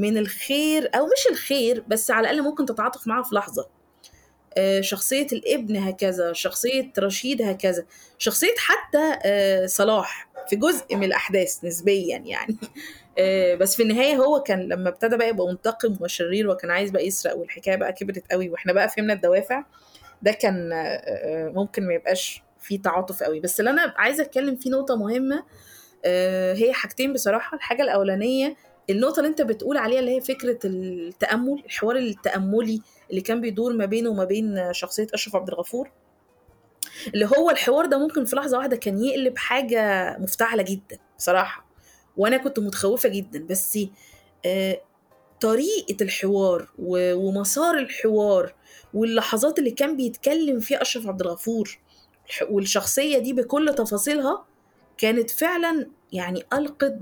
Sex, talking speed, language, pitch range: female, 140 wpm, Arabic, 195-265 Hz